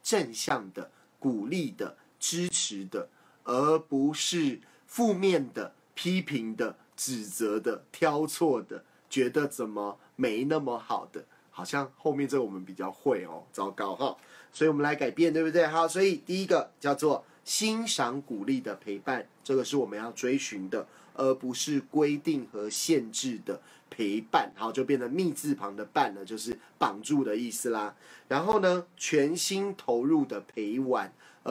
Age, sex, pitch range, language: 30-49, male, 120-160 Hz, Chinese